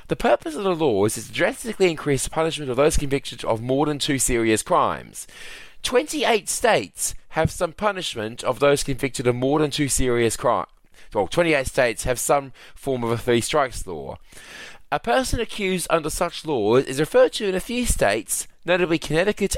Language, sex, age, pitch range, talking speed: English, male, 20-39, 130-180 Hz, 180 wpm